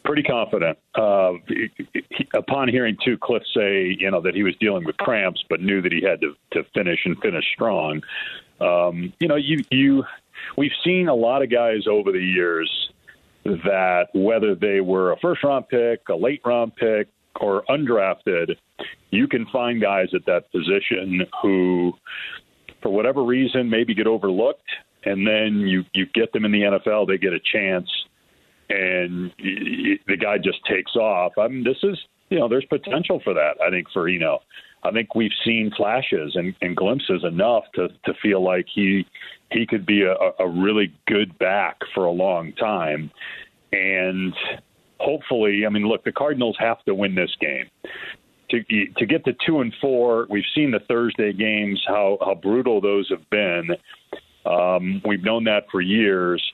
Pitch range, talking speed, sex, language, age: 95-120 Hz, 175 wpm, male, English, 40-59